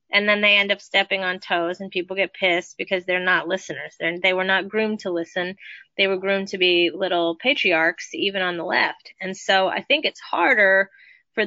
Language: English